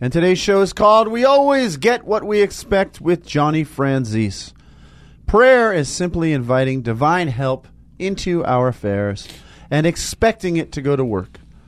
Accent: American